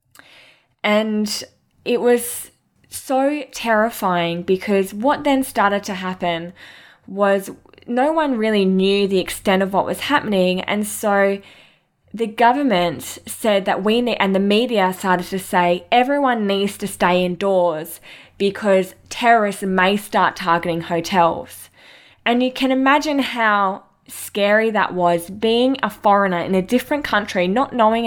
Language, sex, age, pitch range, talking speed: English, female, 20-39, 180-230 Hz, 135 wpm